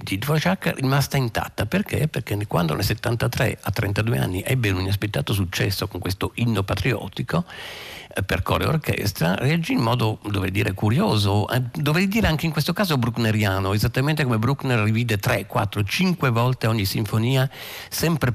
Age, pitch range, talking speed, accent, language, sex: 50-69, 100-130 Hz, 165 wpm, native, Italian, male